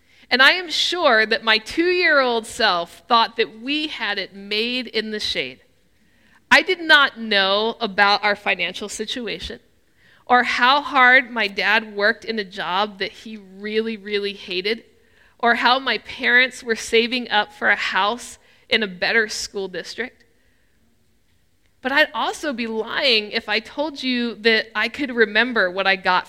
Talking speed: 160 wpm